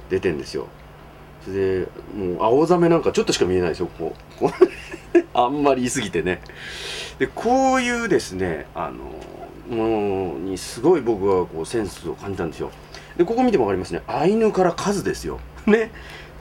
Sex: male